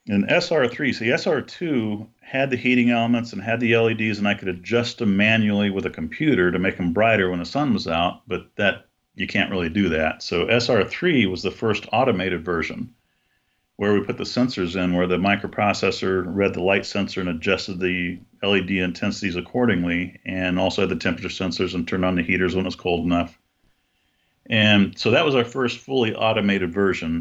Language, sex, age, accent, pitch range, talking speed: English, male, 40-59, American, 90-110 Hz, 195 wpm